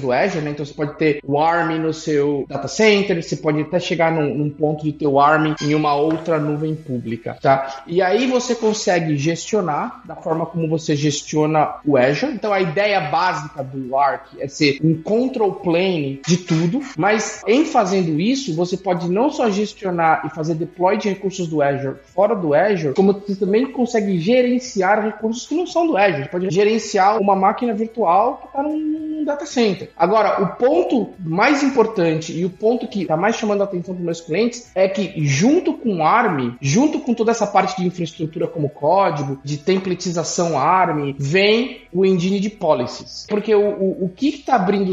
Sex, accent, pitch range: male, Brazilian, 160-225 Hz